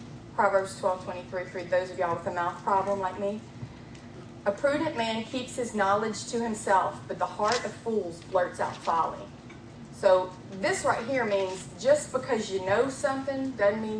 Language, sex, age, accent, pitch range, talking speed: English, female, 30-49, American, 180-210 Hz, 175 wpm